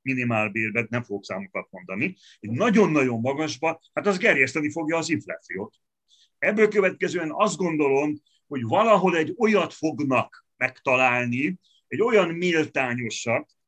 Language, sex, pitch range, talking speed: Hungarian, male, 130-190 Hz, 125 wpm